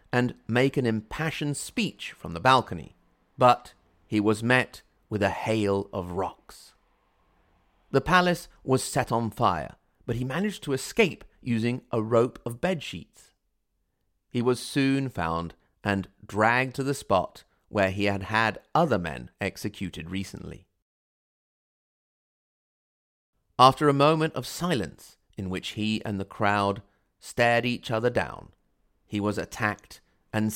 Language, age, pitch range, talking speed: English, 30-49, 100-130 Hz, 135 wpm